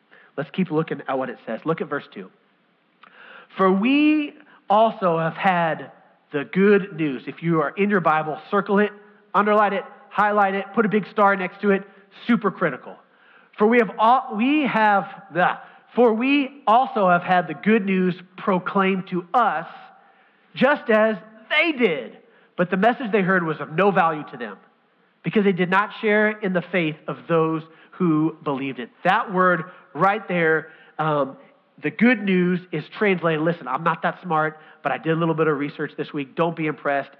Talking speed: 185 wpm